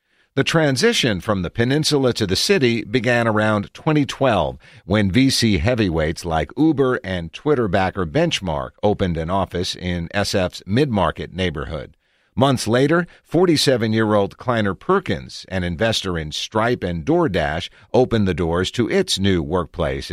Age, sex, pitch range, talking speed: 50-69, male, 90-125 Hz, 130 wpm